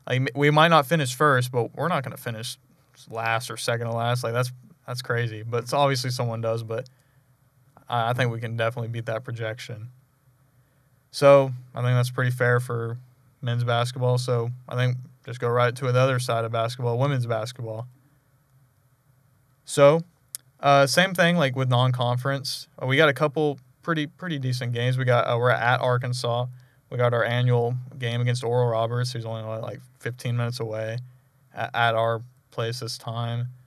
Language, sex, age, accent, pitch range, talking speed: English, male, 20-39, American, 120-135 Hz, 180 wpm